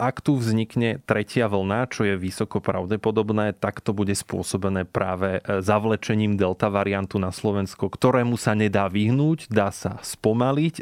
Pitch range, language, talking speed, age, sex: 100-115 Hz, Slovak, 145 wpm, 30-49, male